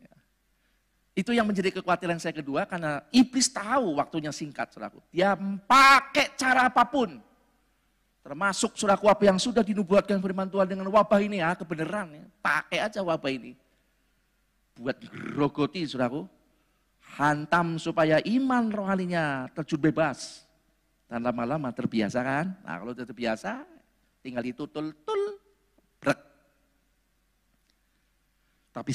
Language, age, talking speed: Indonesian, 50-69, 110 wpm